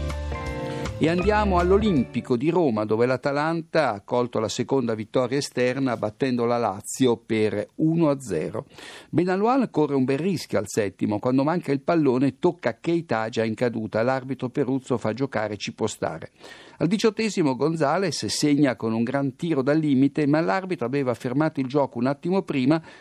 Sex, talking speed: male, 155 wpm